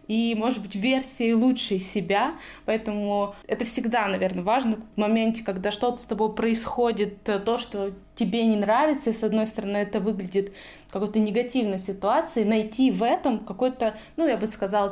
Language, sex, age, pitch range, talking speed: Russian, female, 20-39, 205-240 Hz, 160 wpm